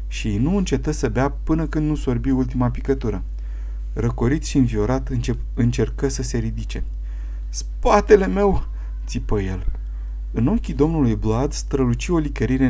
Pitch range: 90-135 Hz